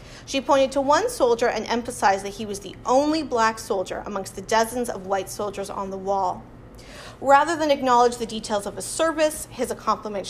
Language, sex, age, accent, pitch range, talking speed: English, female, 30-49, American, 210-280 Hz, 190 wpm